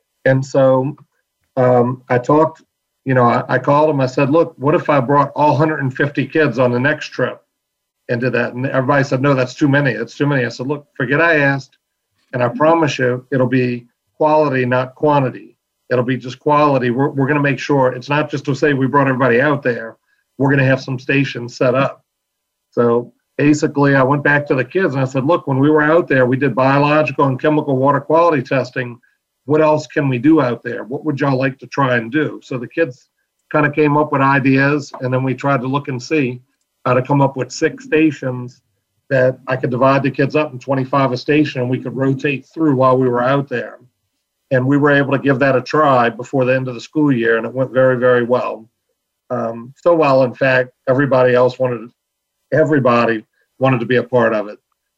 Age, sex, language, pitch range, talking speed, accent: 50-69, male, English, 125-145 Hz, 225 wpm, American